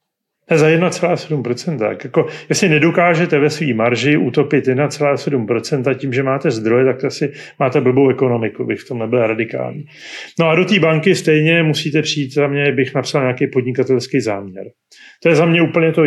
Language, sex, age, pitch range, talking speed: Slovak, male, 40-59, 125-150 Hz, 170 wpm